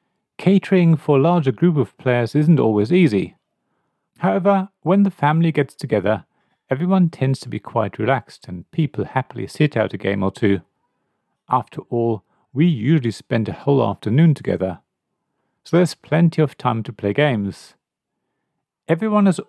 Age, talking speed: 40-59, 155 wpm